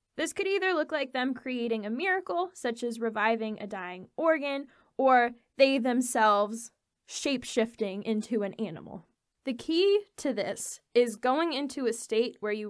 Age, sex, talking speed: 10-29, female, 155 wpm